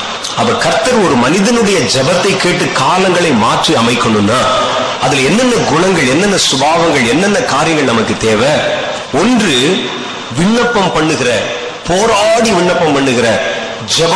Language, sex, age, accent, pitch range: Tamil, male, 30-49, native, 155-220 Hz